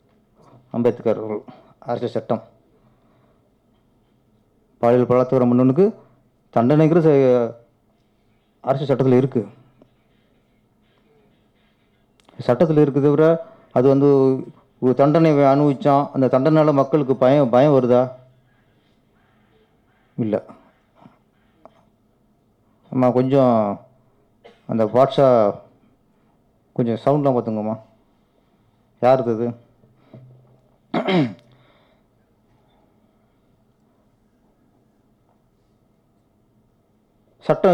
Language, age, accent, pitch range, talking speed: Tamil, 30-49, native, 120-140 Hz, 55 wpm